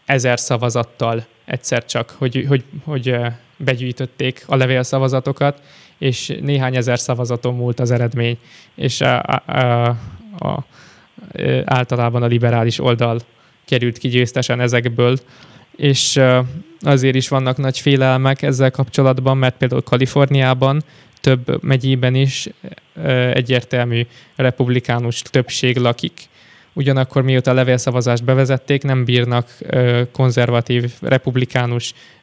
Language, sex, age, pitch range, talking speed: Hungarian, male, 20-39, 125-135 Hz, 95 wpm